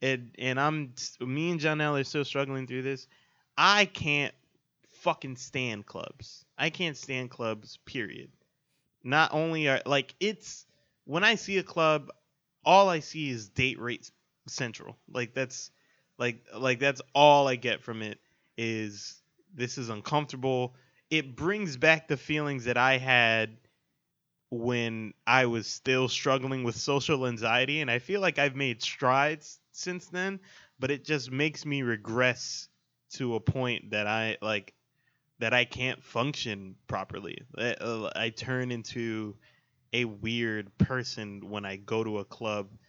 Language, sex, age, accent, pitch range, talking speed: English, male, 20-39, American, 120-150 Hz, 150 wpm